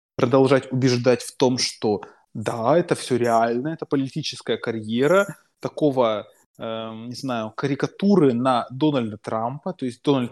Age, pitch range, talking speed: 20-39, 120-150 Hz, 135 wpm